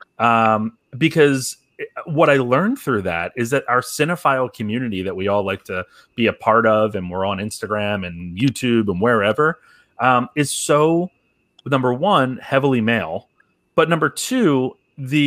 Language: English